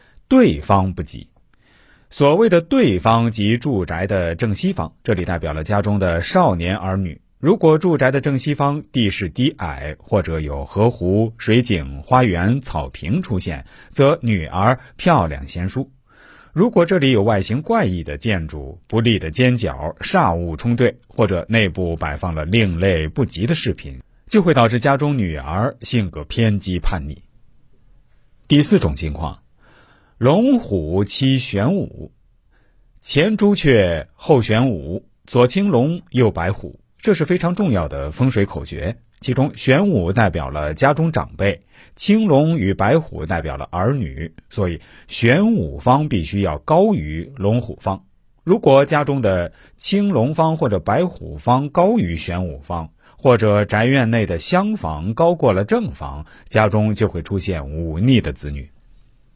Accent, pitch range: native, 85-135 Hz